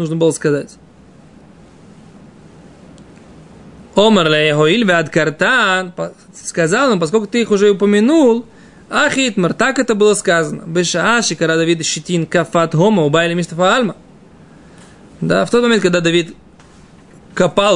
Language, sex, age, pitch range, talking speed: Russian, male, 20-39, 160-200 Hz, 100 wpm